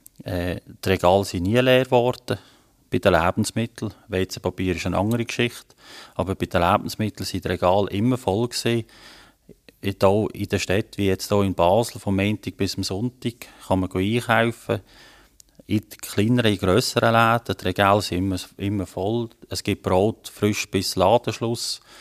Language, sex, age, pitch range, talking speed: German, male, 30-49, 95-115 Hz, 165 wpm